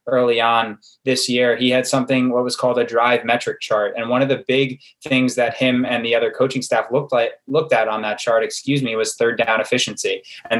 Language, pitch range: English, 115-130 Hz